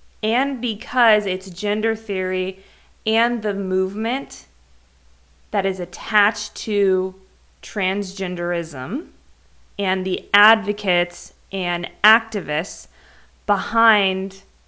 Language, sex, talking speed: English, female, 80 wpm